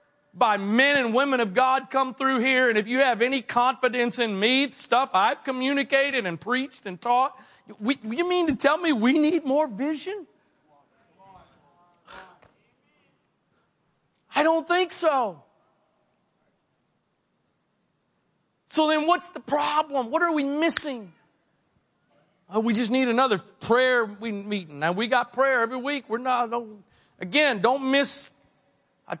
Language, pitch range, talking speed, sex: English, 220-265 Hz, 140 wpm, male